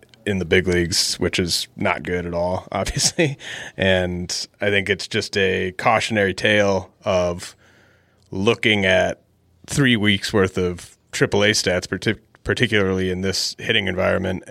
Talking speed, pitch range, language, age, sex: 145 wpm, 95-105 Hz, English, 30-49, male